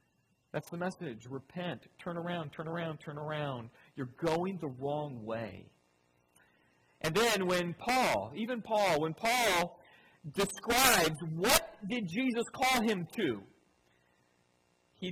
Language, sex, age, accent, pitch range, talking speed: English, male, 40-59, American, 140-200 Hz, 125 wpm